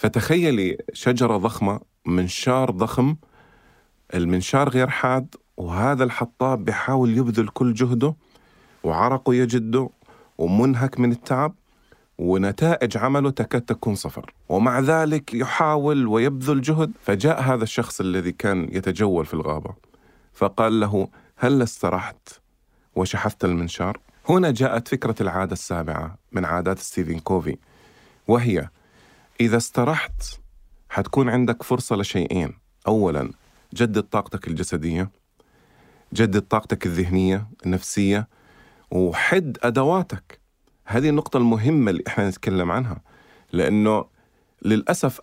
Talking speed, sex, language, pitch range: 105 wpm, male, Arabic, 95-130 Hz